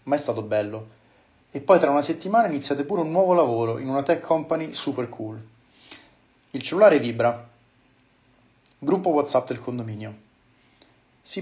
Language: Italian